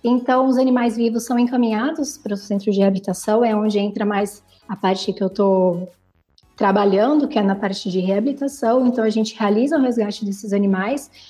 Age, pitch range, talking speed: 20-39, 200-255 Hz, 185 wpm